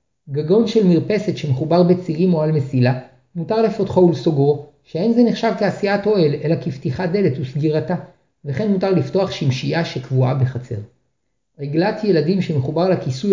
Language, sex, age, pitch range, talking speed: Hebrew, male, 50-69, 140-185 Hz, 135 wpm